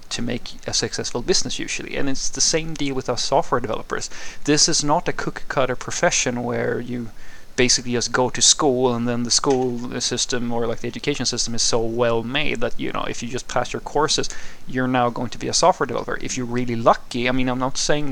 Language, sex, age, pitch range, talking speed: English, male, 30-49, 120-140 Hz, 230 wpm